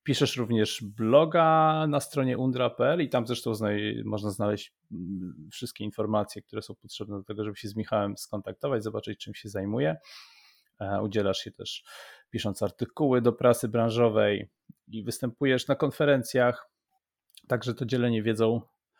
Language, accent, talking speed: Polish, native, 135 wpm